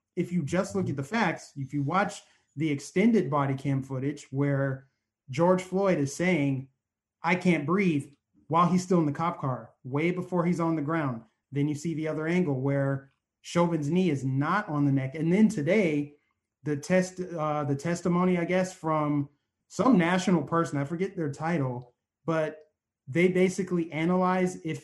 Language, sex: English, male